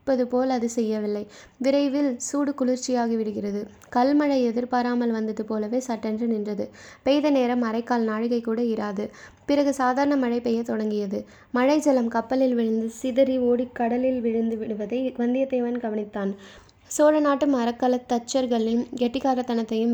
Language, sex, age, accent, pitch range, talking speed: Tamil, female, 20-39, native, 225-255 Hz, 110 wpm